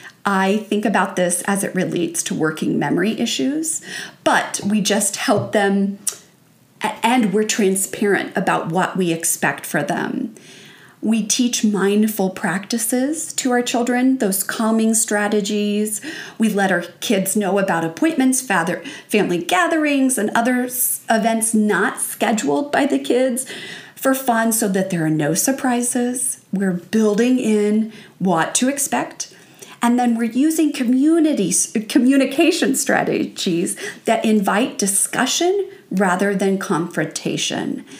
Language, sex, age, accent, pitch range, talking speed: English, female, 40-59, American, 190-245 Hz, 125 wpm